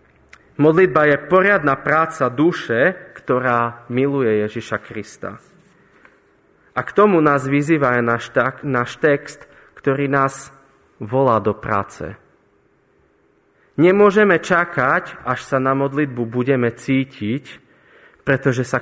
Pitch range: 125-165 Hz